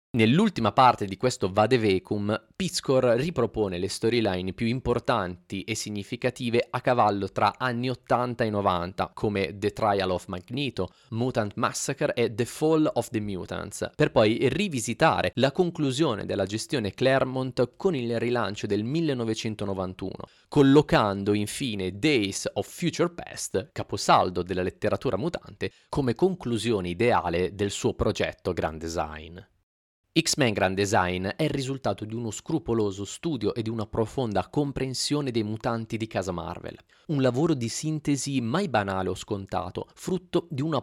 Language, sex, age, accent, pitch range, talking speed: Italian, male, 30-49, native, 100-135 Hz, 140 wpm